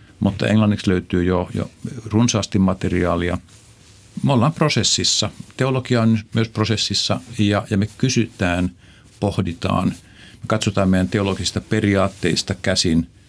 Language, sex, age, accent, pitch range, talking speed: Finnish, male, 50-69, native, 85-105 Hz, 115 wpm